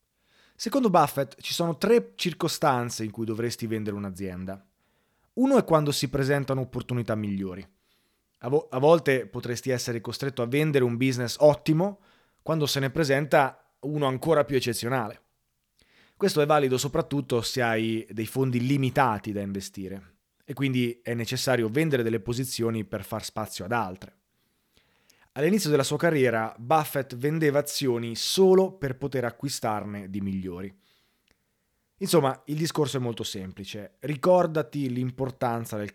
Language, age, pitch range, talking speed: Italian, 30-49, 110-150 Hz, 135 wpm